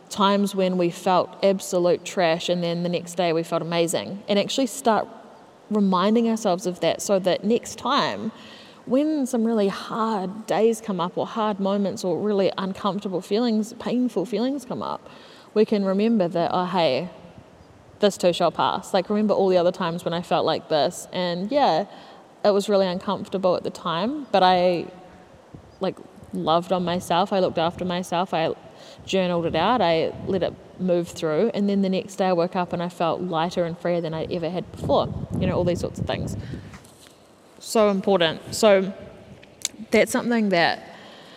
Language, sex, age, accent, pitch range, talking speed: English, female, 20-39, Australian, 175-205 Hz, 180 wpm